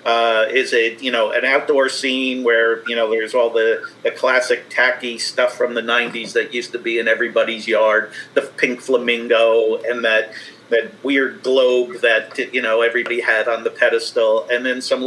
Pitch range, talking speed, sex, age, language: 115-140 Hz, 185 wpm, male, 50-69, English